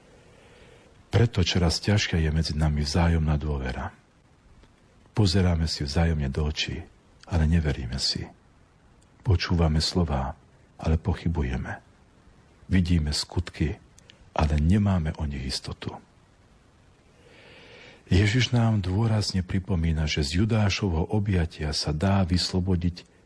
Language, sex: Slovak, male